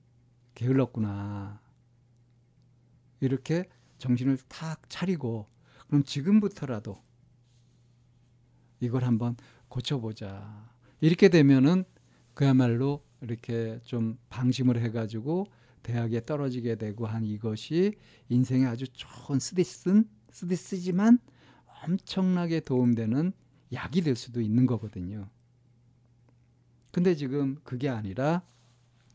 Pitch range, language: 120-140 Hz, Korean